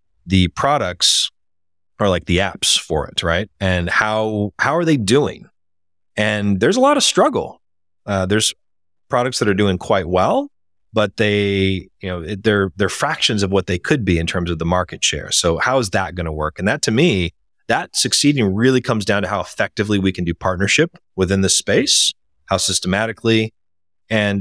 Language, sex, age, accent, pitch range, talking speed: English, male, 30-49, American, 85-110 Hz, 185 wpm